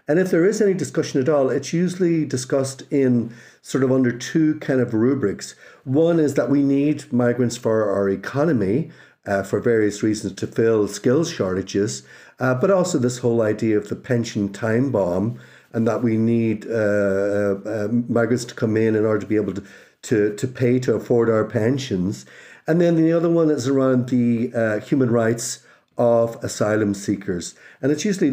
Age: 50-69